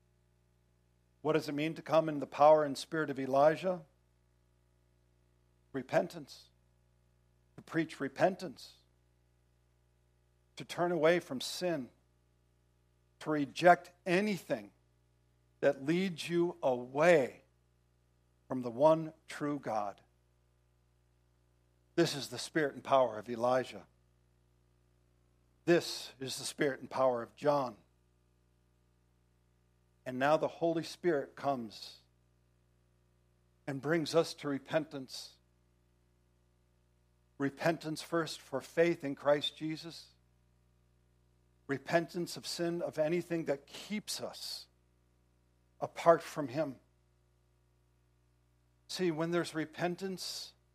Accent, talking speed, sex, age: American, 100 wpm, male, 60-79